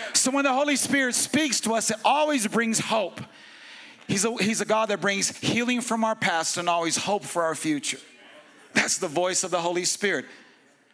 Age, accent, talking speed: 50-69, American, 195 wpm